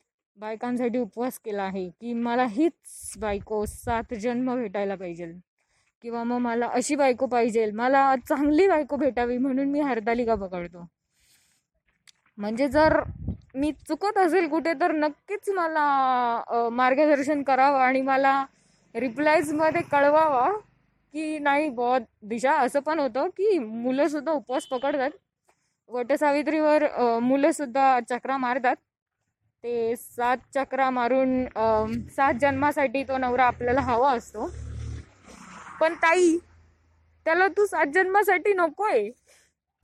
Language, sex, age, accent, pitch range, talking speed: Marathi, female, 20-39, native, 240-305 Hz, 110 wpm